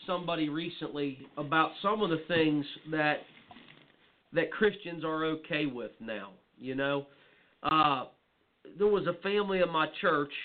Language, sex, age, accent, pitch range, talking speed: English, male, 40-59, American, 140-175 Hz, 140 wpm